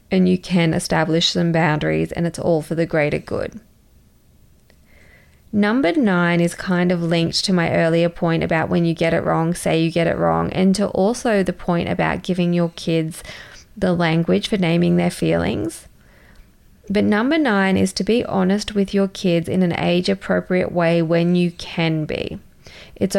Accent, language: Australian, English